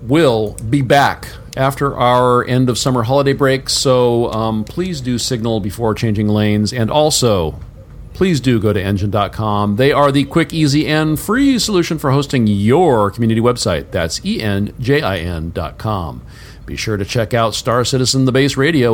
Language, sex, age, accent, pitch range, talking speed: English, male, 50-69, American, 105-135 Hz, 165 wpm